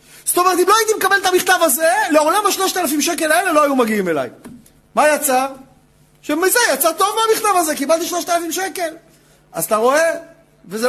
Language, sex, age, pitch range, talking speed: Hebrew, male, 40-59, 245-315 Hz, 170 wpm